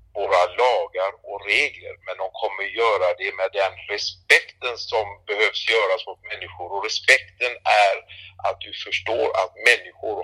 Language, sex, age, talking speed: English, male, 60-79, 145 wpm